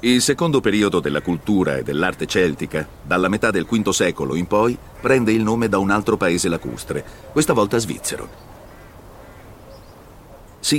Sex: male